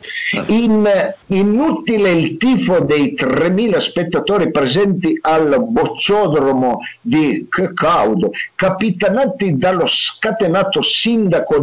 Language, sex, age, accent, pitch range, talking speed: Italian, male, 50-69, native, 160-230 Hz, 85 wpm